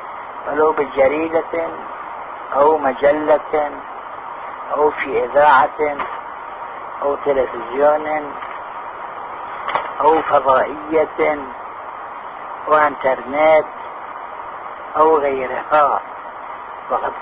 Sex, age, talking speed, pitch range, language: male, 50-69, 50 wpm, 140-160 Hz, Arabic